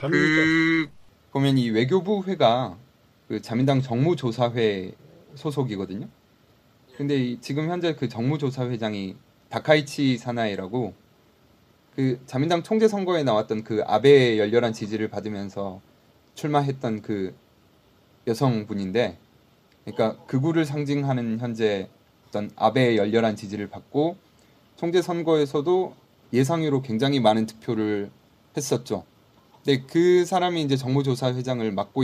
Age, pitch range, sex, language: 20-39, 110-150 Hz, male, Korean